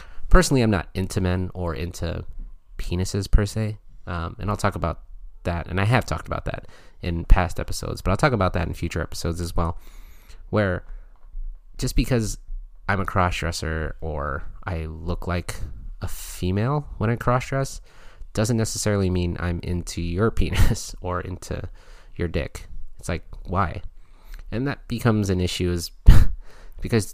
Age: 30-49